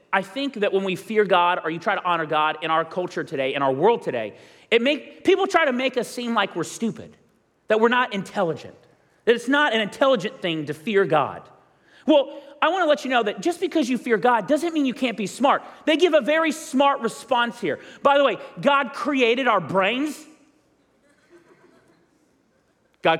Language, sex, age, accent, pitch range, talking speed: English, male, 40-59, American, 220-300 Hz, 205 wpm